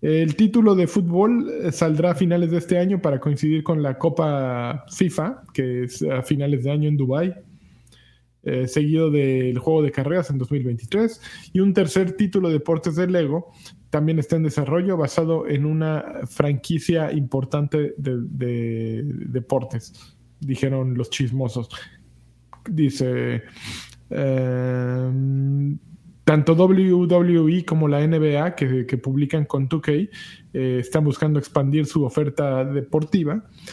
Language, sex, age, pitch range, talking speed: Spanish, male, 20-39, 135-165 Hz, 130 wpm